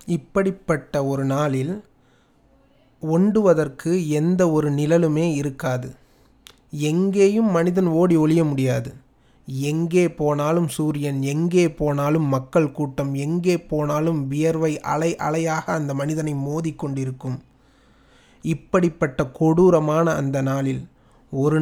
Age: 30-49